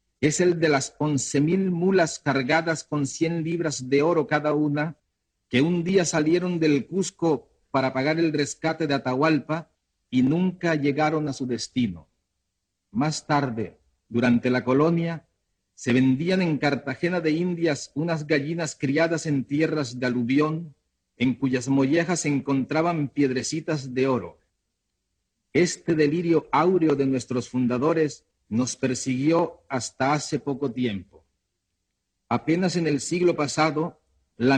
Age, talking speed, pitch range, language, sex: 50-69, 130 wpm, 130-160 Hz, Spanish, male